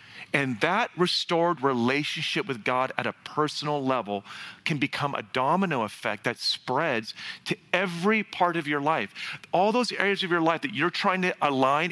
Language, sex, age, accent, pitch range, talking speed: English, male, 40-59, American, 115-155 Hz, 170 wpm